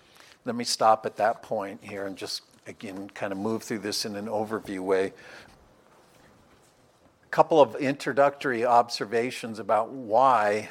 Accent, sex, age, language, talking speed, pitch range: American, male, 60-79, English, 145 wpm, 110-130 Hz